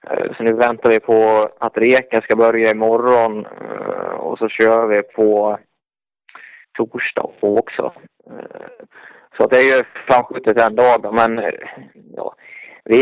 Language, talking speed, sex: Swedish, 120 wpm, male